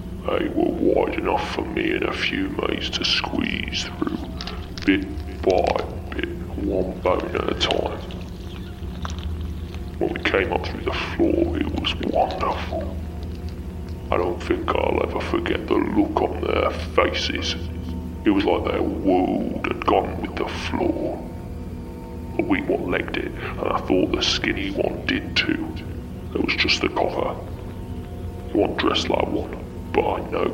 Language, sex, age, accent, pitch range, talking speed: English, female, 30-49, British, 85-90 Hz, 150 wpm